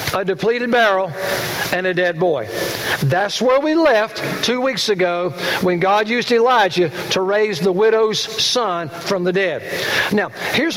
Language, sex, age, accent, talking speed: English, male, 60-79, American, 155 wpm